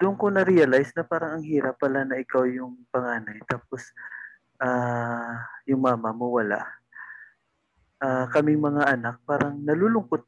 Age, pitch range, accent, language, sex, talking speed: 20-39, 120-145 Hz, native, Filipino, male, 140 wpm